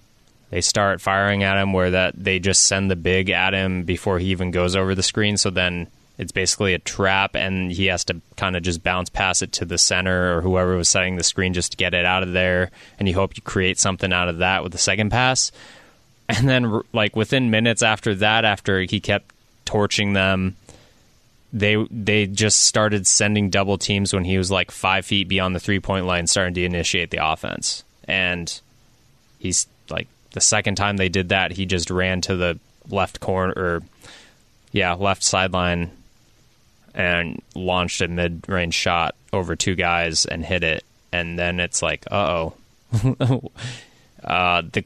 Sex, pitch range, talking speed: male, 90-105 Hz, 185 wpm